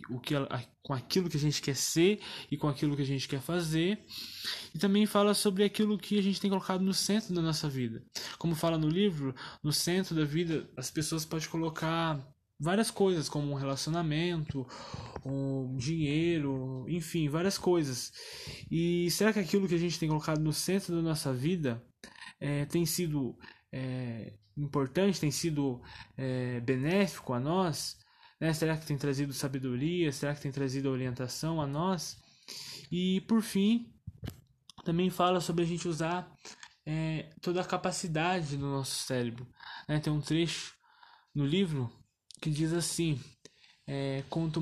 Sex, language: male, Portuguese